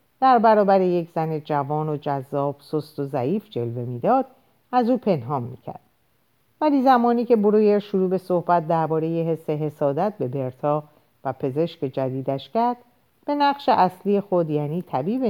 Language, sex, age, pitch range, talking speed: Persian, female, 50-69, 140-215 Hz, 150 wpm